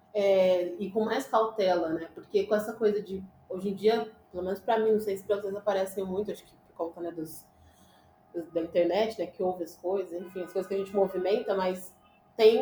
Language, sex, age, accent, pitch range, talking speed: Portuguese, female, 20-39, Brazilian, 185-225 Hz, 215 wpm